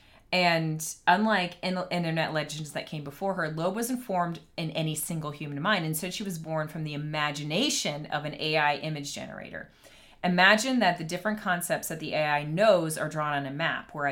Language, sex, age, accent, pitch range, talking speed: English, female, 30-49, American, 150-190 Hz, 190 wpm